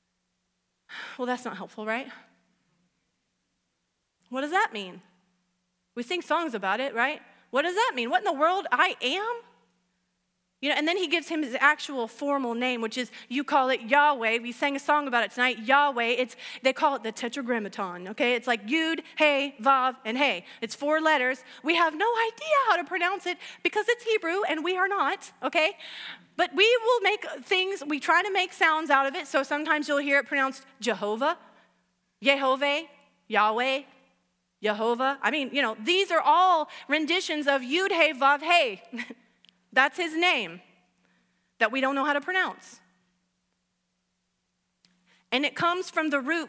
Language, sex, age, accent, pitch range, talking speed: English, female, 30-49, American, 240-325 Hz, 175 wpm